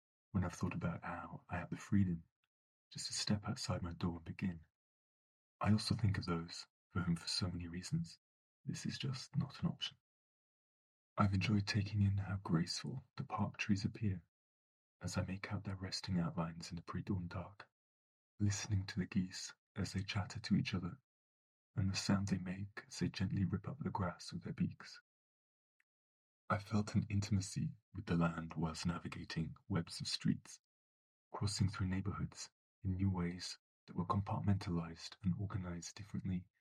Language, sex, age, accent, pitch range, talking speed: English, male, 30-49, British, 85-100 Hz, 170 wpm